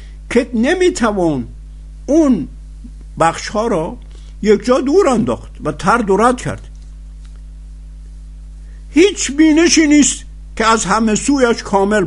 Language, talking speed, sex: Persian, 105 wpm, male